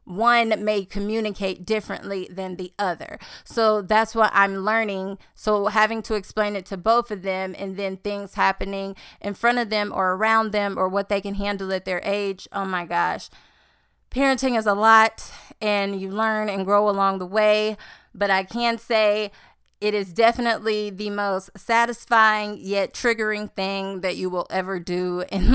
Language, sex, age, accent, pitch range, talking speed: English, female, 30-49, American, 190-215 Hz, 175 wpm